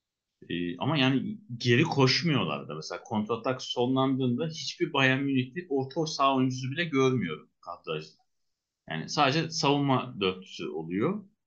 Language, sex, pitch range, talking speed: Turkish, male, 100-135 Hz, 125 wpm